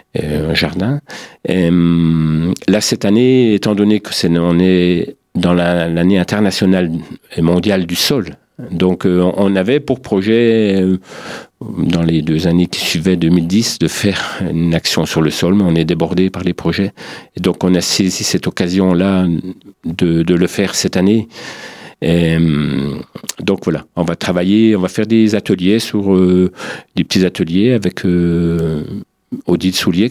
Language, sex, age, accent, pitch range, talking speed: French, male, 40-59, French, 85-100 Hz, 160 wpm